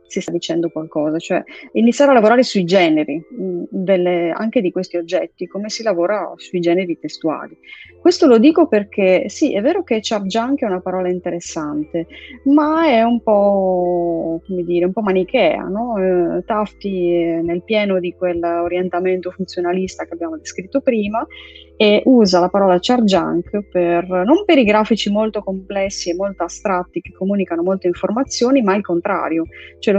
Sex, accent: female, native